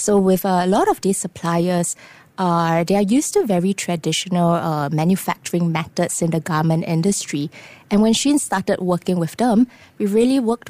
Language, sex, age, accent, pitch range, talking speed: English, female, 20-39, Malaysian, 160-195 Hz, 175 wpm